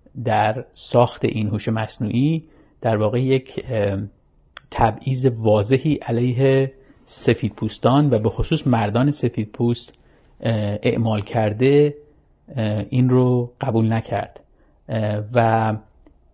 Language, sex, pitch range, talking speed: Persian, male, 110-125 Hz, 90 wpm